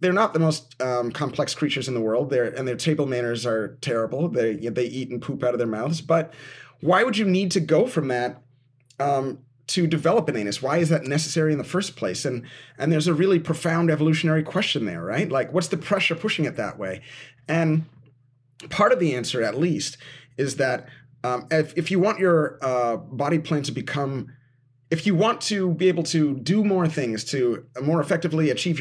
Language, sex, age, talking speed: English, male, 30-49, 210 wpm